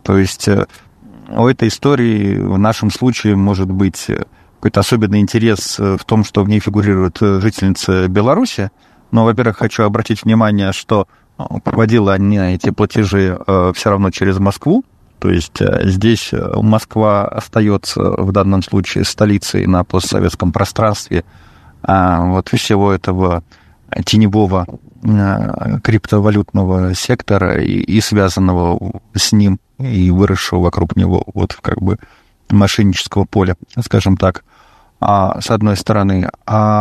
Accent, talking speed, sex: native, 120 wpm, male